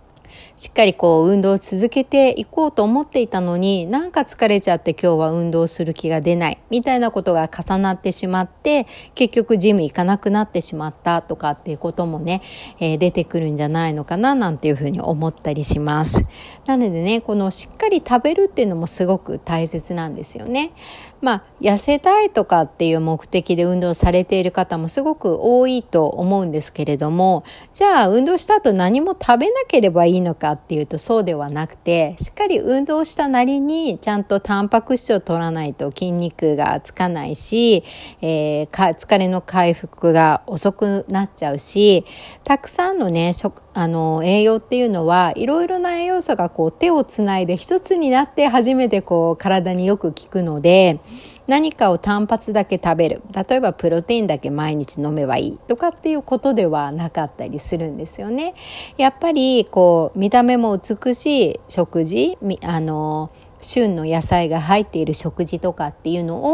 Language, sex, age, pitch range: Japanese, female, 60-79, 165-240 Hz